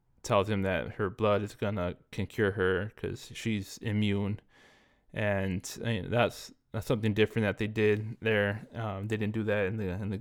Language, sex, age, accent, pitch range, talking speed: English, male, 20-39, American, 100-115 Hz, 200 wpm